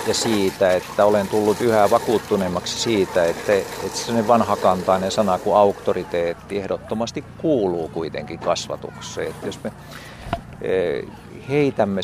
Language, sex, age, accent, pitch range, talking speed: Finnish, male, 50-69, native, 90-110 Hz, 110 wpm